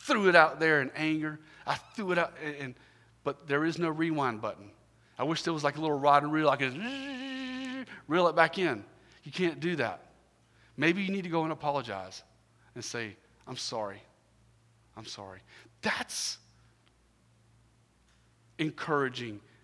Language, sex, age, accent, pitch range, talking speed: English, male, 40-59, American, 115-145 Hz, 165 wpm